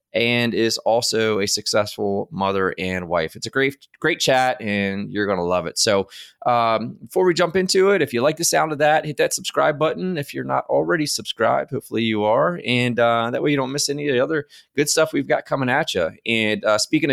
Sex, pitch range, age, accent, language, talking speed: male, 100-135 Hz, 20-39, American, English, 230 wpm